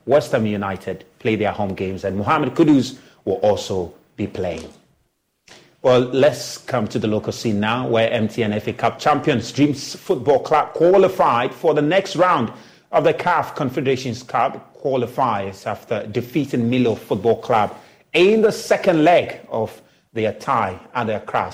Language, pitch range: English, 105-135 Hz